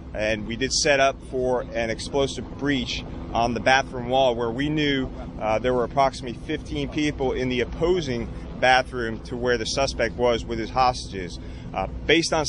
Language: English